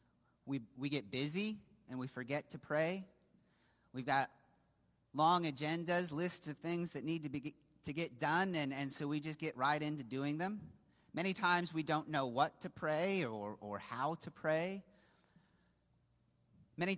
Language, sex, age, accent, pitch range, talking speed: English, male, 30-49, American, 125-170 Hz, 165 wpm